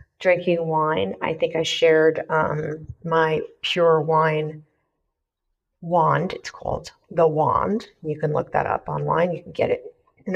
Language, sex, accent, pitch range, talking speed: English, female, American, 150-180 Hz, 150 wpm